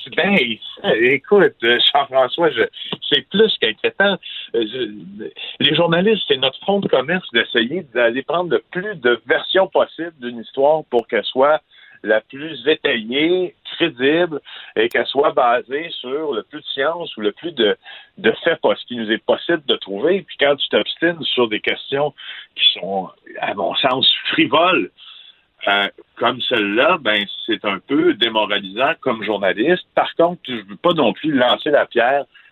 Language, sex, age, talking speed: French, male, 50-69, 160 wpm